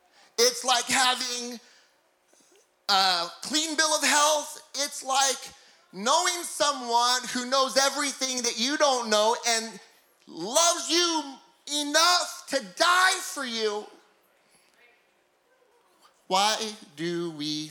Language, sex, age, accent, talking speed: English, male, 30-49, American, 100 wpm